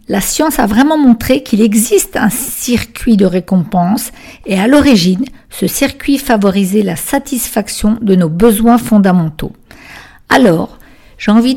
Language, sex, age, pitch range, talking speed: French, female, 50-69, 185-235 Hz, 135 wpm